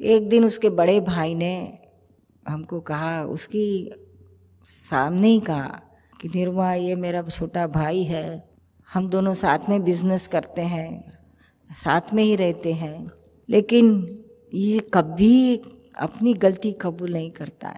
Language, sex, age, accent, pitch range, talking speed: Hindi, female, 50-69, native, 165-225 Hz, 130 wpm